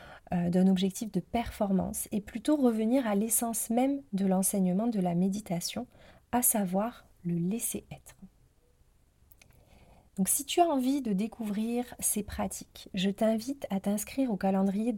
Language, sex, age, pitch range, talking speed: French, female, 30-49, 185-235 Hz, 135 wpm